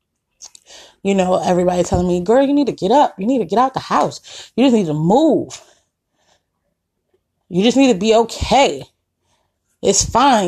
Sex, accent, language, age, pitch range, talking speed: female, American, English, 20-39, 175-220 Hz, 180 wpm